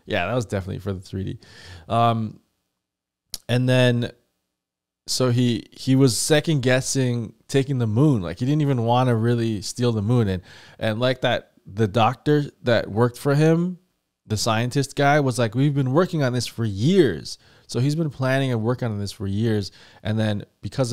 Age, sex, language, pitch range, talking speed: 20-39, male, English, 100-135 Hz, 180 wpm